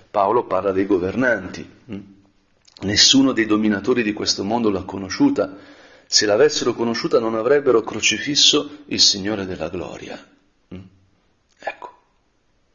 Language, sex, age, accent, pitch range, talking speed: Italian, male, 50-69, native, 100-140 Hz, 110 wpm